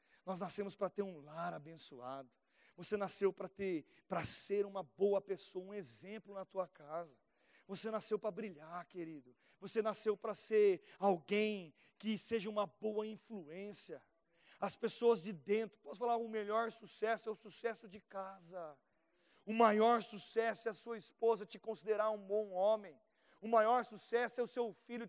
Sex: male